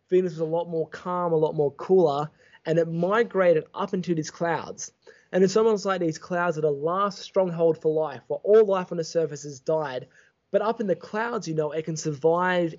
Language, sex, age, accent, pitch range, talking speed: English, male, 20-39, Australian, 160-195 Hz, 220 wpm